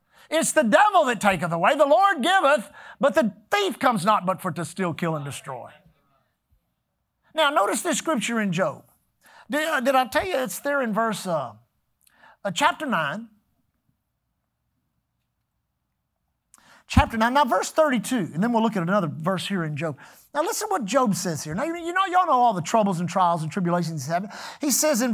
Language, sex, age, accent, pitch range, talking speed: English, male, 50-69, American, 195-280 Hz, 190 wpm